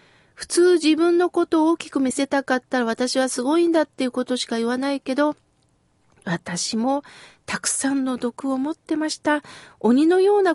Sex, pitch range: female, 235-325 Hz